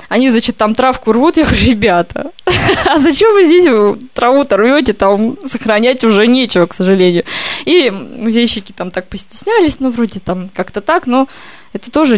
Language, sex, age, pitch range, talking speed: Russian, female, 20-39, 190-250 Hz, 165 wpm